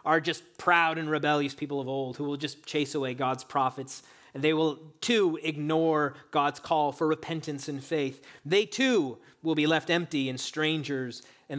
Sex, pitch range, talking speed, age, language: male, 130-160 Hz, 180 wpm, 30-49, English